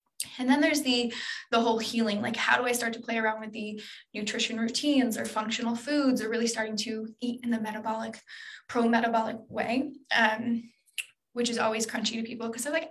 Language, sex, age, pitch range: English, female, 10-29, 225-265 Hz